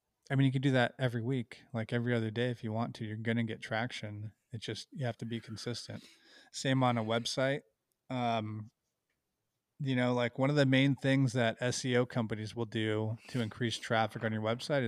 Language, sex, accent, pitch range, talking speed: English, male, American, 115-130 Hz, 210 wpm